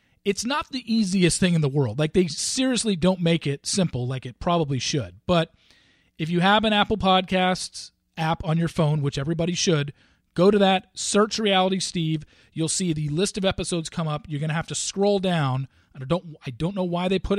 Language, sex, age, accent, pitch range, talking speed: English, male, 40-59, American, 130-175 Hz, 215 wpm